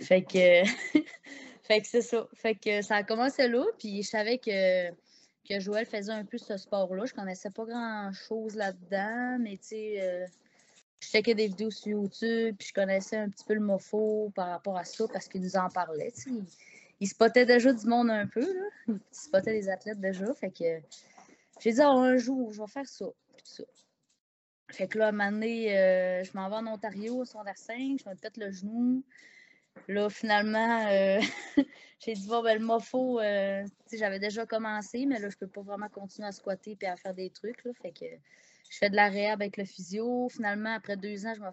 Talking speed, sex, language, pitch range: 210 wpm, female, French, 195-230 Hz